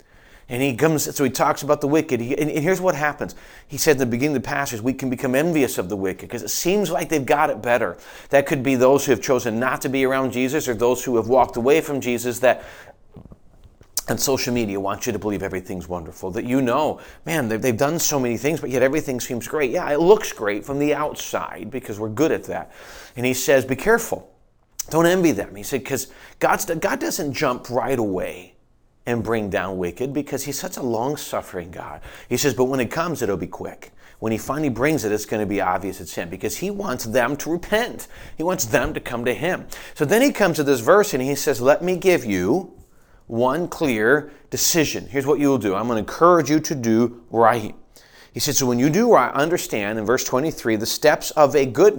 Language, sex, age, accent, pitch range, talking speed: English, male, 30-49, American, 115-150 Hz, 230 wpm